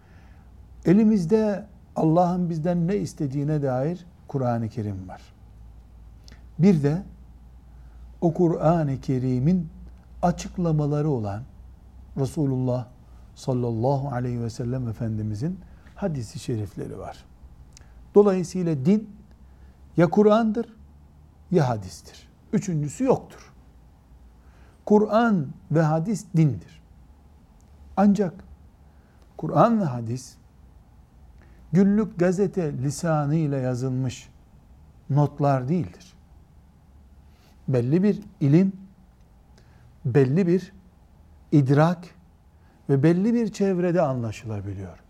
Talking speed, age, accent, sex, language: 80 wpm, 60-79, native, male, Turkish